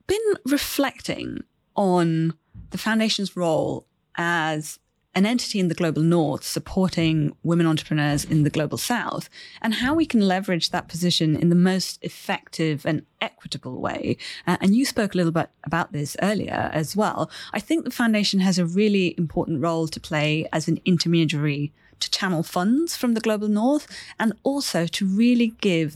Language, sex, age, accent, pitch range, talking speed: English, female, 30-49, British, 155-205 Hz, 165 wpm